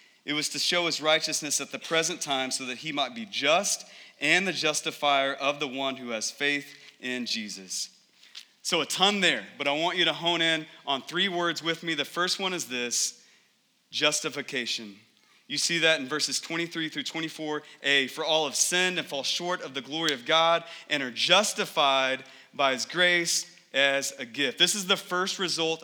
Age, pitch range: 30-49, 150-195 Hz